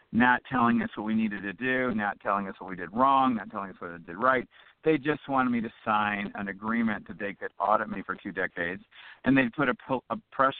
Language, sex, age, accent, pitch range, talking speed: English, male, 50-69, American, 105-140 Hz, 250 wpm